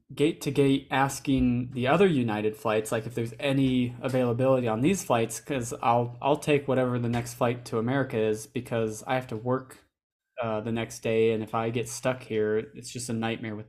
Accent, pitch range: American, 120-140 Hz